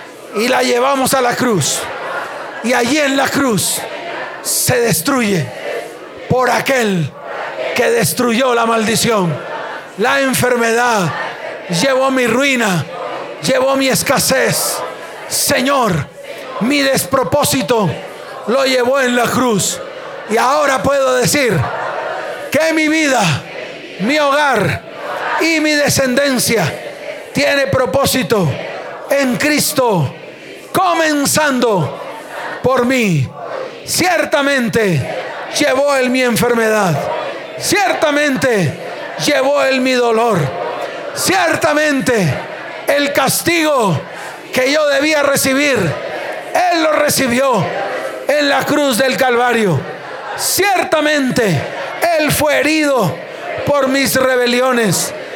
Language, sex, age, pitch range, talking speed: Spanish, male, 40-59, 245-290 Hz, 95 wpm